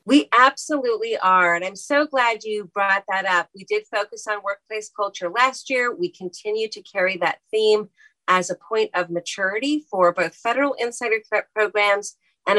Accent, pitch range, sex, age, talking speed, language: American, 170-215 Hz, female, 40-59, 175 wpm, English